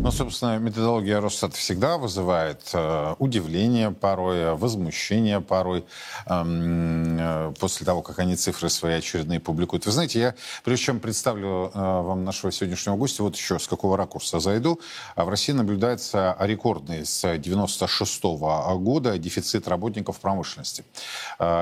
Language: Russian